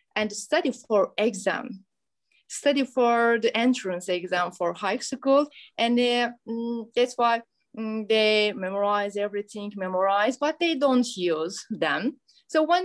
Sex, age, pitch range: female, 20-39, 195-265 Hz